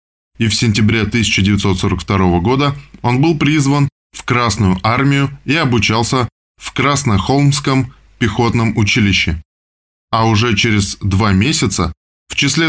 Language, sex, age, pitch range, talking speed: Russian, male, 20-39, 100-135 Hz, 115 wpm